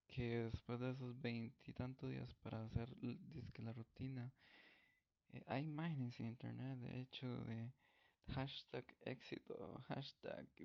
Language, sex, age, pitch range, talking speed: Spanish, male, 20-39, 115-140 Hz, 125 wpm